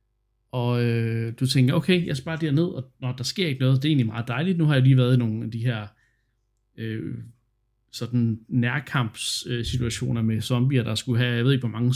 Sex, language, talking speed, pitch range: male, Danish, 220 wpm, 115-135 Hz